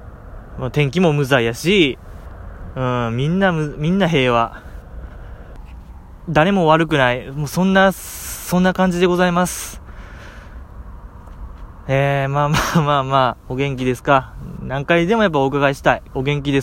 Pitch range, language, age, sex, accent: 95-160 Hz, Japanese, 20-39, male, native